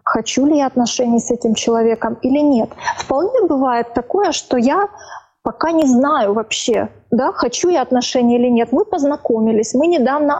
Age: 20-39